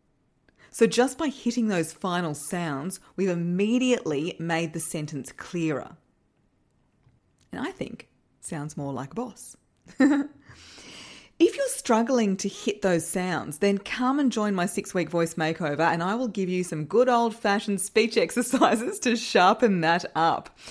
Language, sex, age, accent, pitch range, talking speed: English, female, 30-49, Australian, 165-225 Hz, 150 wpm